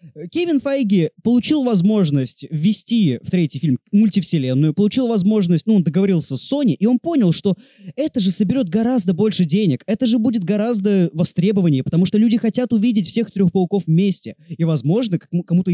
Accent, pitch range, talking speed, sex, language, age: native, 155-230 Hz, 165 wpm, male, Russian, 20-39